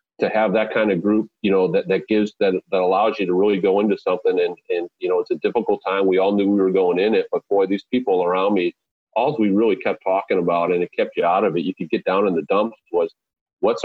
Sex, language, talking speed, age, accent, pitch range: male, English, 275 wpm, 40-59, American, 95-105 Hz